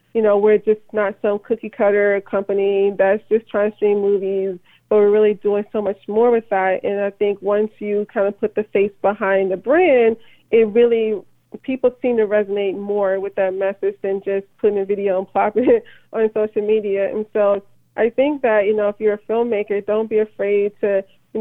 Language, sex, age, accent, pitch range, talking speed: English, female, 20-39, American, 200-220 Hz, 205 wpm